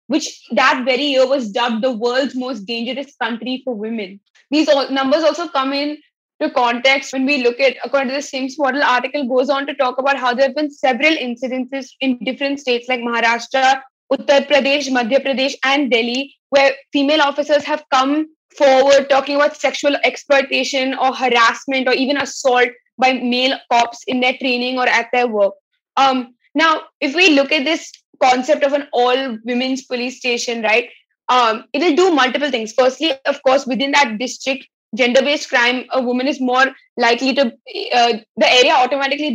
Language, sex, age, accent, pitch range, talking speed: English, female, 20-39, Indian, 250-285 Hz, 175 wpm